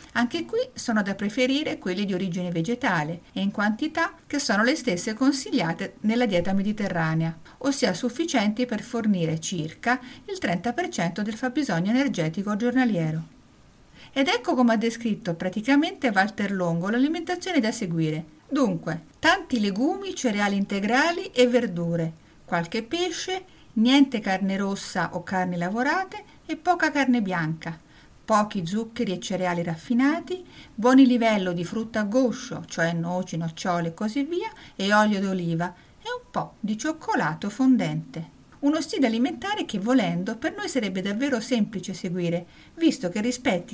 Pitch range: 180-265 Hz